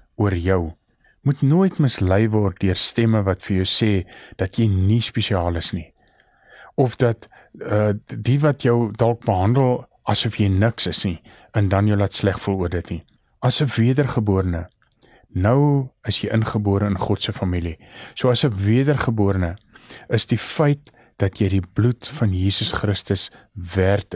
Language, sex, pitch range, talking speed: English, male, 95-120 Hz, 160 wpm